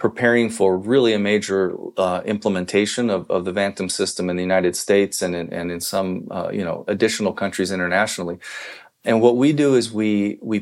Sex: male